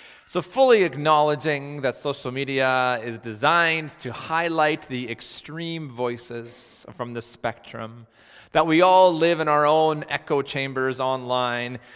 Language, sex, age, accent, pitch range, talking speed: English, male, 30-49, American, 115-180 Hz, 130 wpm